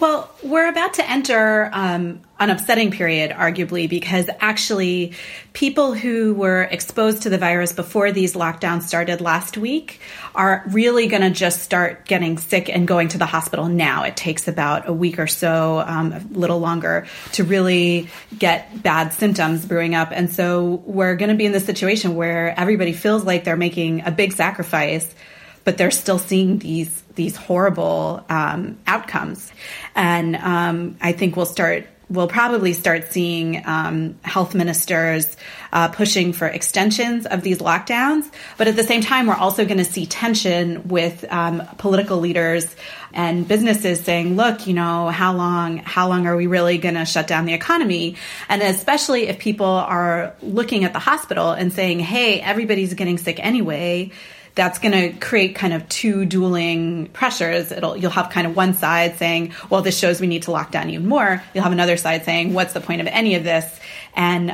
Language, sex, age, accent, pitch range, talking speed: English, female, 30-49, American, 170-195 Hz, 180 wpm